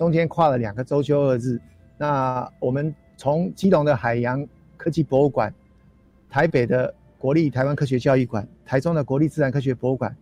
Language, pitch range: Chinese, 125-155 Hz